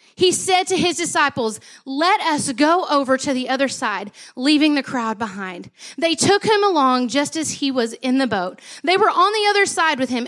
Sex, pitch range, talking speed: female, 240-345 Hz, 210 wpm